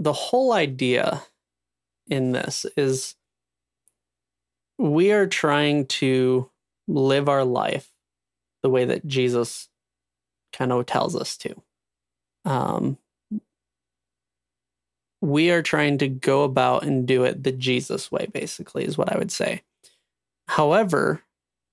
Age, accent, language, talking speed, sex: 20-39, American, English, 115 wpm, male